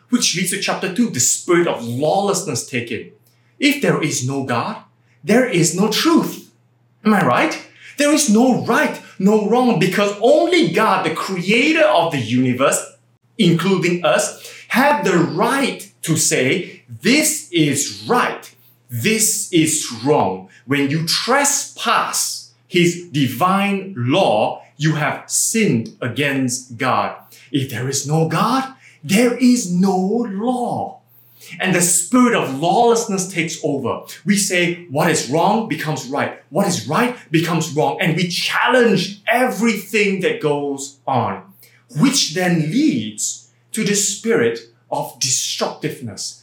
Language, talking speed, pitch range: English, 135 wpm, 135-220 Hz